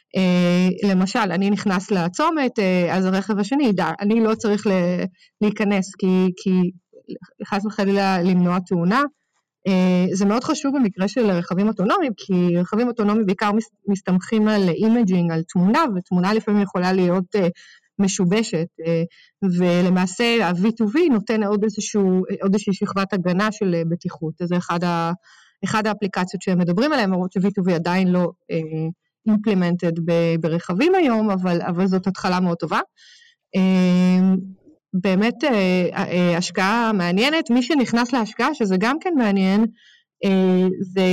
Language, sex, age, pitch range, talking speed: Hebrew, female, 30-49, 180-215 Hz, 120 wpm